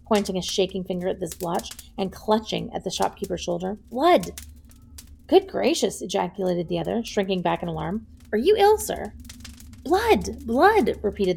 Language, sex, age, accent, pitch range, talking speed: English, female, 30-49, American, 170-215 Hz, 160 wpm